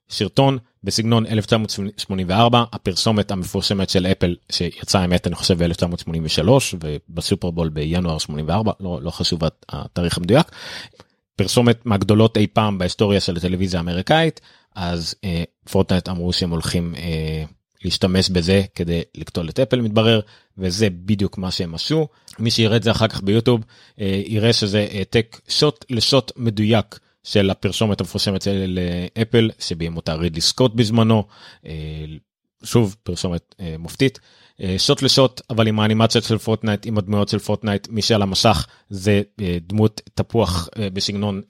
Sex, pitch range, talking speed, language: male, 90-110 Hz, 130 wpm, Hebrew